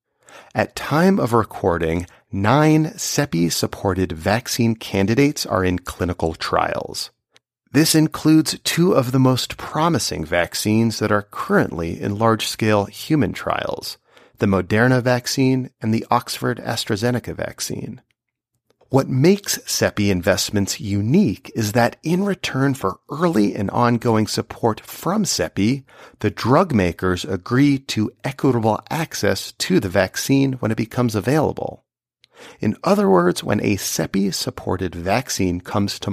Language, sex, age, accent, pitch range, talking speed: English, male, 40-59, American, 100-135 Hz, 125 wpm